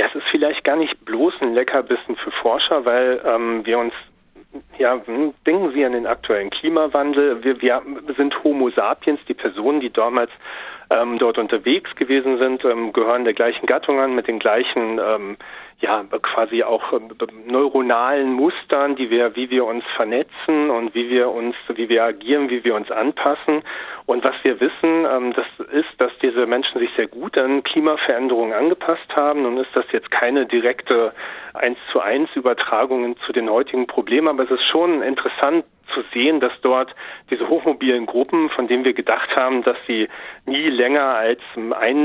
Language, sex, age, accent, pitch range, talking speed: German, male, 40-59, German, 120-145 Hz, 175 wpm